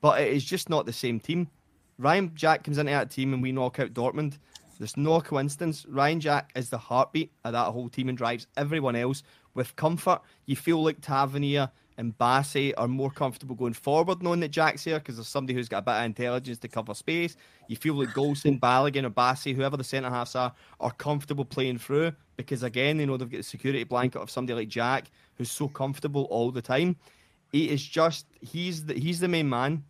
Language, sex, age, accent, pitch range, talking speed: English, male, 30-49, British, 125-155 Hz, 215 wpm